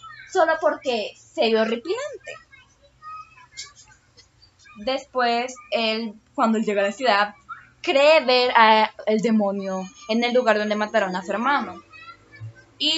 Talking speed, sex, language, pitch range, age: 125 wpm, female, Spanish, 200-280 Hz, 10-29